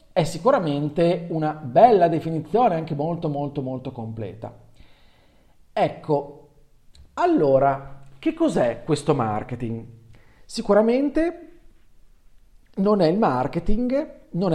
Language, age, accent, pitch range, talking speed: Italian, 40-59, native, 130-200 Hz, 90 wpm